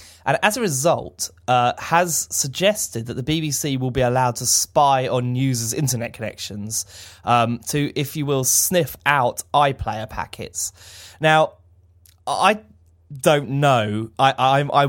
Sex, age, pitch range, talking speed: male, 20-39, 110-140 Hz, 140 wpm